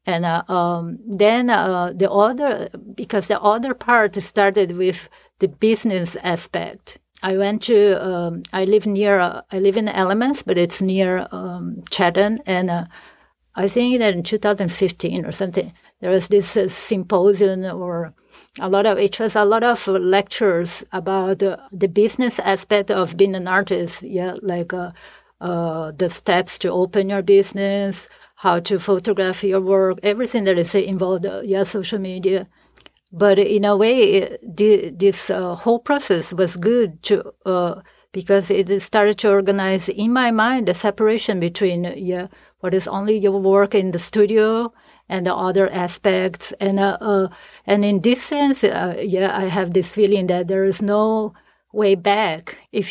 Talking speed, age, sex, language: 165 wpm, 40-59, female, English